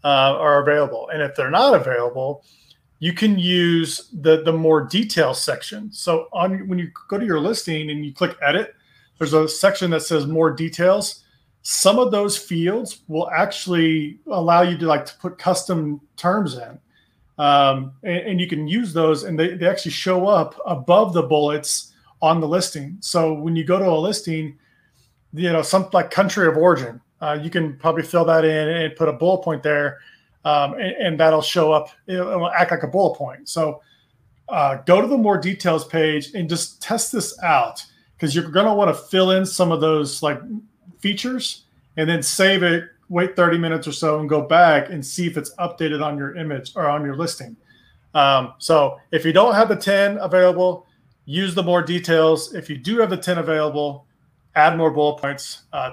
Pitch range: 150-180 Hz